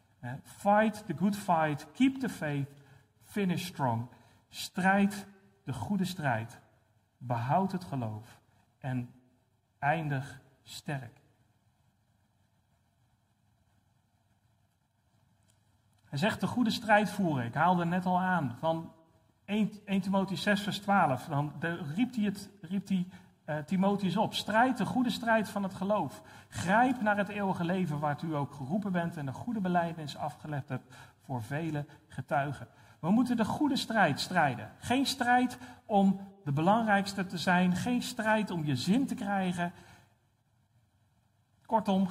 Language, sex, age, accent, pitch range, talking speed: Dutch, male, 40-59, Dutch, 120-195 Hz, 135 wpm